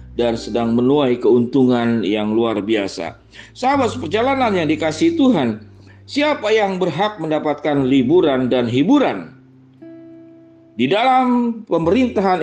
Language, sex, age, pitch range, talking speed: Indonesian, male, 40-59, 125-165 Hz, 105 wpm